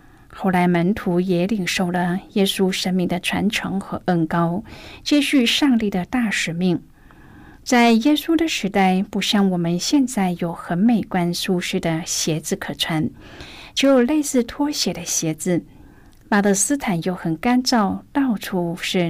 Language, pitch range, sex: Chinese, 175-235 Hz, female